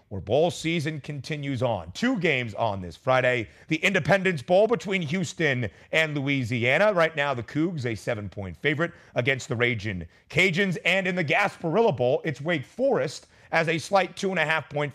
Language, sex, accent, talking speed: English, male, American, 160 wpm